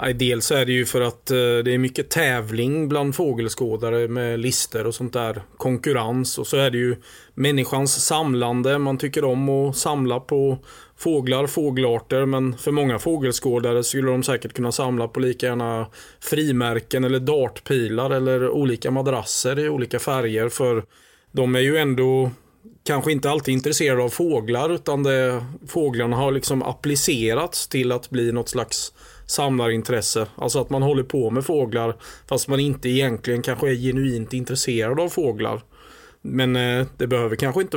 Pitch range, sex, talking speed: 120-140 Hz, male, 155 wpm